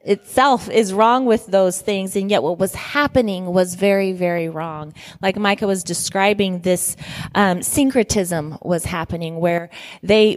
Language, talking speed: English, 150 wpm